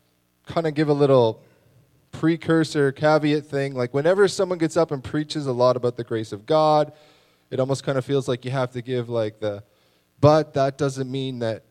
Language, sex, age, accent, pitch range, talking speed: English, male, 20-39, American, 110-150 Hz, 200 wpm